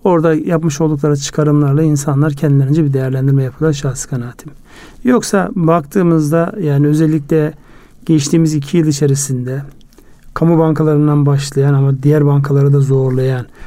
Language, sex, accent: Turkish, male, native